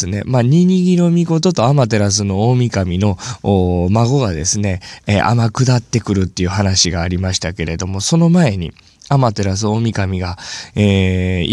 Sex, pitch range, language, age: male, 100-165 Hz, Japanese, 20-39